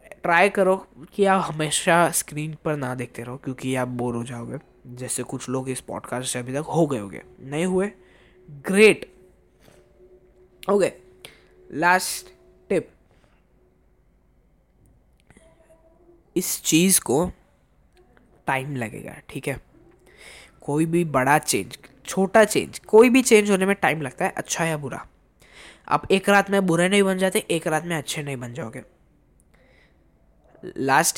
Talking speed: 140 wpm